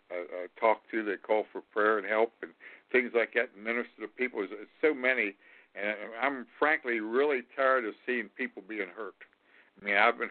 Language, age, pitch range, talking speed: English, 60-79, 110-145 Hz, 185 wpm